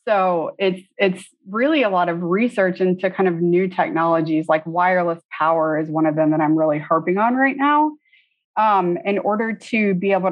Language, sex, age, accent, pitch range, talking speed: English, female, 30-49, American, 170-205 Hz, 190 wpm